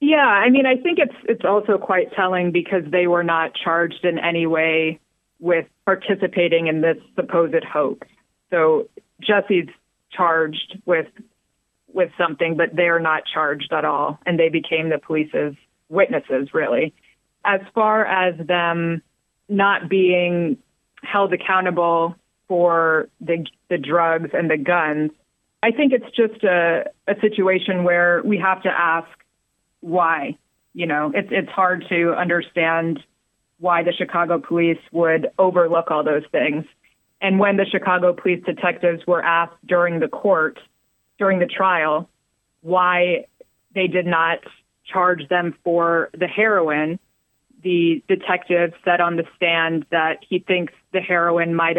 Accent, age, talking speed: American, 20-39, 140 wpm